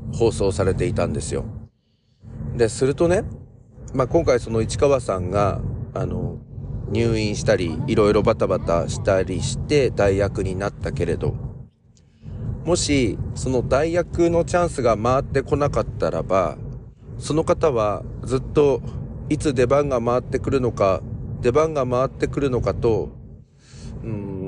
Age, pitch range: 40-59, 115-140 Hz